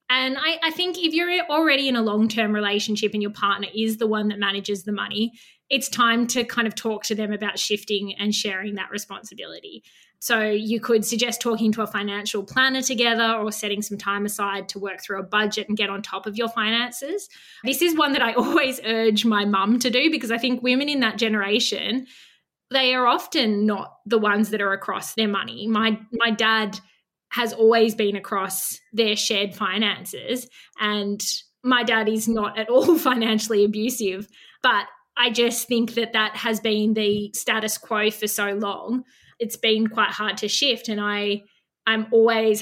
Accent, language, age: Australian, English, 20-39